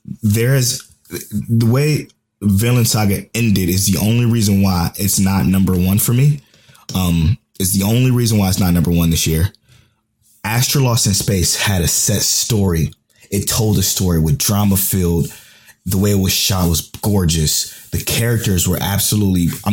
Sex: male